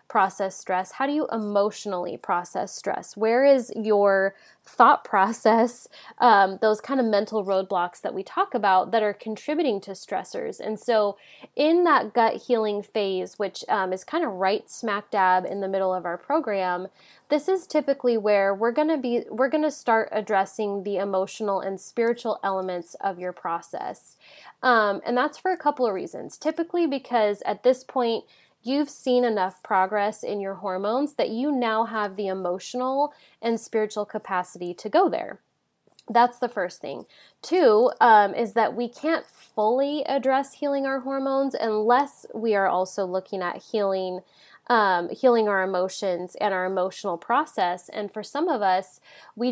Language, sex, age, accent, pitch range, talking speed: English, female, 20-39, American, 190-245 Hz, 165 wpm